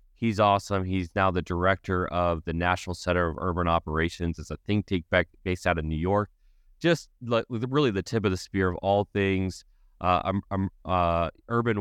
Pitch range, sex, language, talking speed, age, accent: 85-100 Hz, male, English, 200 wpm, 30-49, American